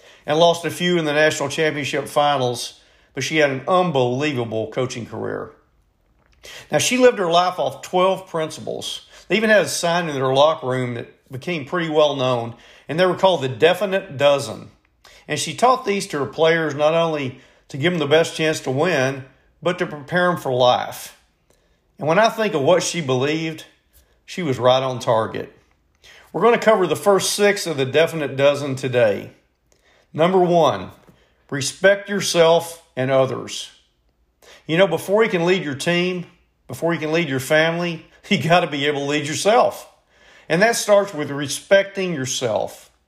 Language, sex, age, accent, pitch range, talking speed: English, male, 50-69, American, 135-180 Hz, 175 wpm